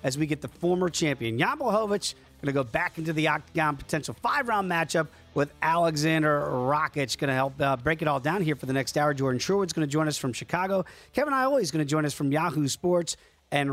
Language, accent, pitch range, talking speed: English, American, 150-195 Hz, 225 wpm